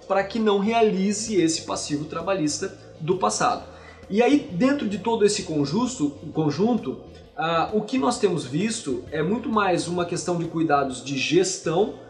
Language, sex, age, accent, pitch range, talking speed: Portuguese, male, 20-39, Brazilian, 145-205 Hz, 150 wpm